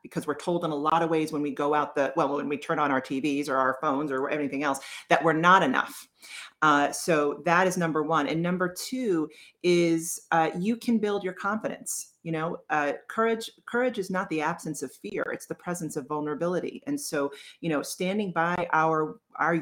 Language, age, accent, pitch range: English, 40-59, American, 160-210 Hz